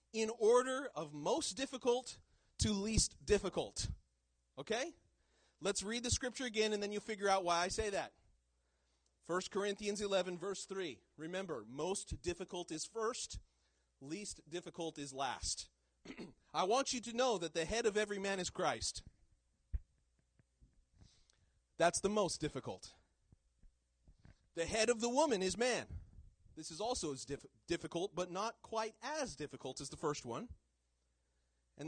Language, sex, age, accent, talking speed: English, male, 30-49, American, 145 wpm